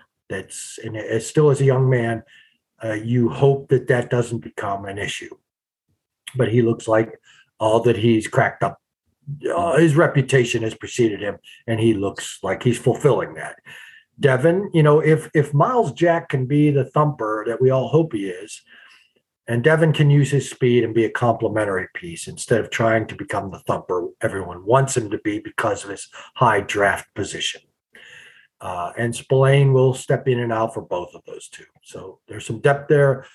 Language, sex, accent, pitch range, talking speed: English, male, American, 115-145 Hz, 185 wpm